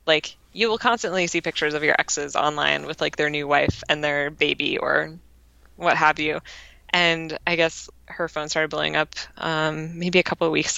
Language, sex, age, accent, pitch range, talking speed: English, female, 20-39, American, 155-180 Hz, 200 wpm